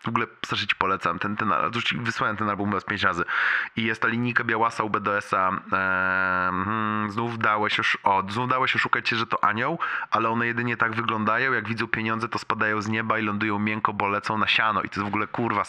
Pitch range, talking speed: 105-120 Hz, 210 wpm